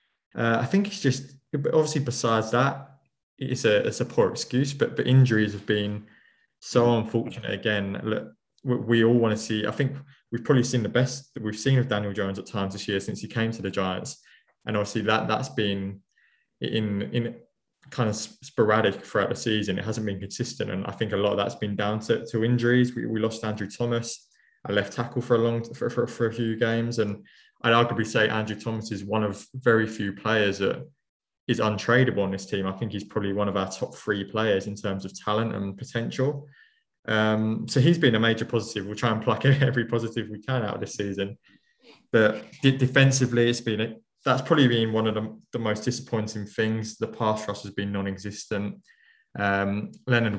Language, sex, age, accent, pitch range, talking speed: English, male, 20-39, British, 105-125 Hz, 210 wpm